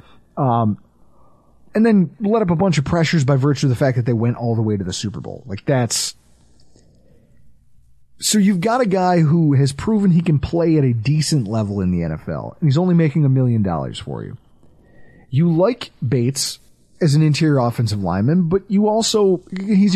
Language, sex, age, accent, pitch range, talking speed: English, male, 30-49, American, 130-175 Hz, 195 wpm